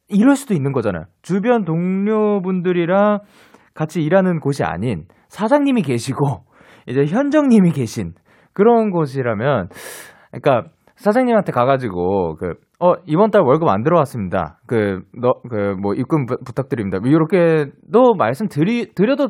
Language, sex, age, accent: Korean, male, 20-39, native